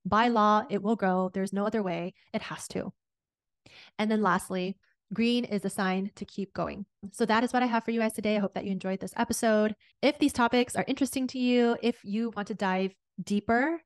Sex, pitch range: female, 195-230 Hz